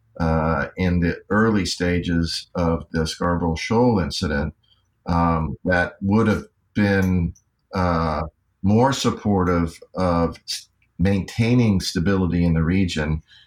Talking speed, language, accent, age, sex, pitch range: 105 wpm, English, American, 50-69, male, 85-100 Hz